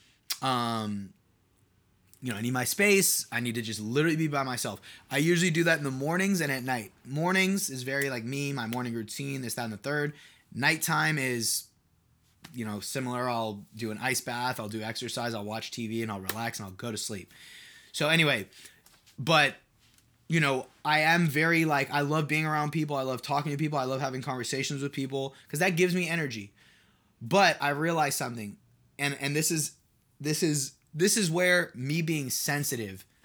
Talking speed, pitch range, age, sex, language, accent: 195 wpm, 120-155 Hz, 20-39, male, English, American